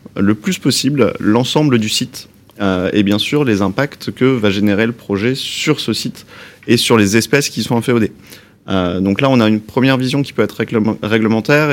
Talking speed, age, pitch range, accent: 200 wpm, 20-39, 105-125 Hz, French